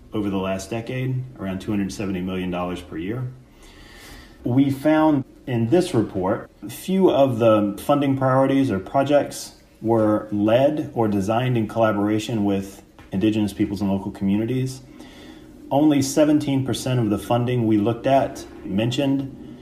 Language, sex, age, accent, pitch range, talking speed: English, male, 30-49, American, 100-130 Hz, 130 wpm